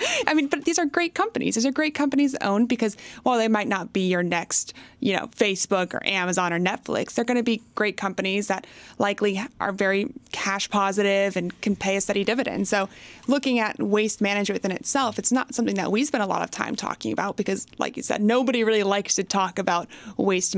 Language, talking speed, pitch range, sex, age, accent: English, 220 wpm, 190-230 Hz, female, 20-39, American